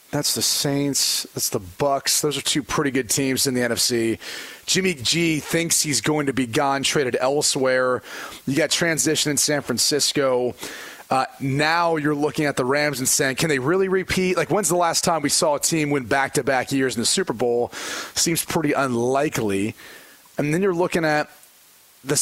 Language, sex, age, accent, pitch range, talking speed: English, male, 30-49, American, 130-160 Hz, 185 wpm